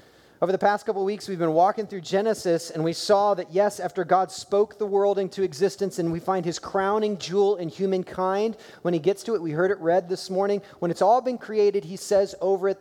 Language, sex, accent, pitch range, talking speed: English, male, American, 160-205 Hz, 235 wpm